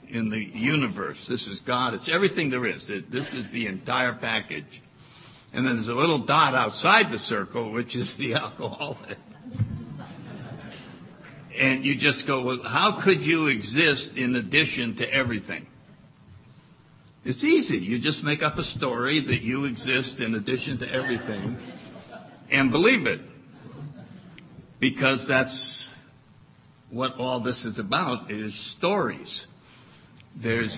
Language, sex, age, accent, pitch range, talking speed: English, male, 60-79, American, 120-150 Hz, 135 wpm